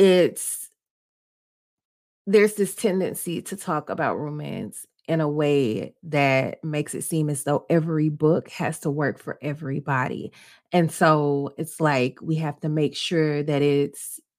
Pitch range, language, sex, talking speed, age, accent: 145-185 Hz, English, female, 145 wpm, 30-49, American